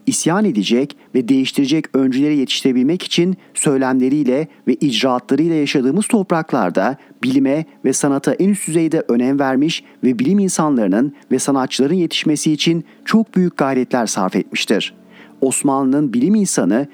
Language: Turkish